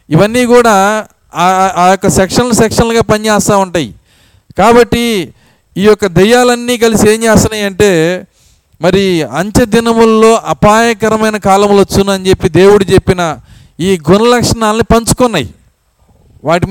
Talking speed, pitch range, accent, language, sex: 100 wpm, 160-220 Hz, native, Telugu, male